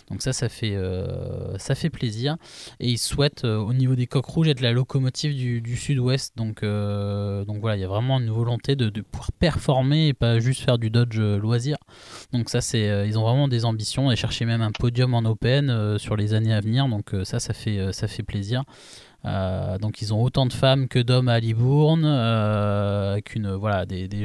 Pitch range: 110-130 Hz